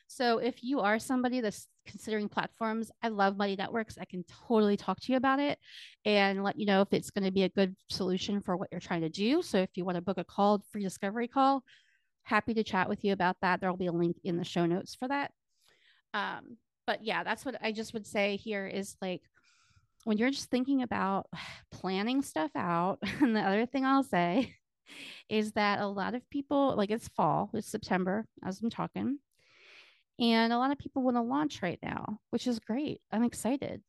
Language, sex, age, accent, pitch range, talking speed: English, female, 30-49, American, 190-240 Hz, 215 wpm